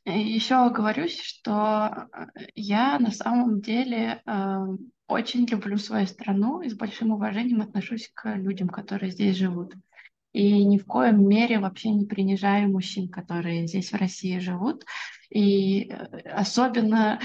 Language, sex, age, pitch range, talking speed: Russian, female, 20-39, 195-240 Hz, 130 wpm